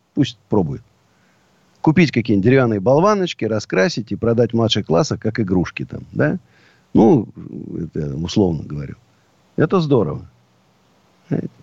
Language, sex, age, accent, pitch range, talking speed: Russian, male, 50-69, native, 110-165 Hz, 110 wpm